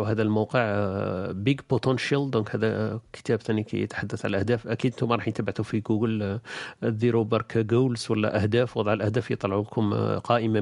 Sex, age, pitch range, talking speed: male, 50-69, 105-125 Hz, 155 wpm